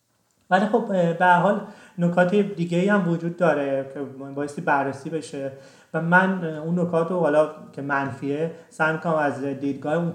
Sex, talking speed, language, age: male, 155 wpm, Persian, 30-49